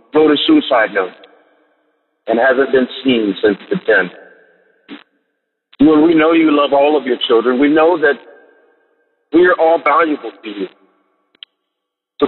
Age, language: 50-69, English